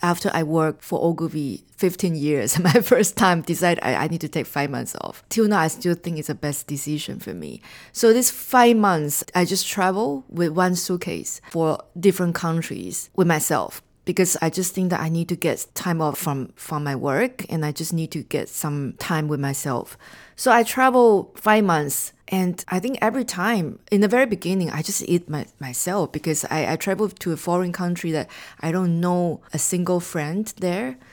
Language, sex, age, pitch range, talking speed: English, female, 20-39, 160-215 Hz, 200 wpm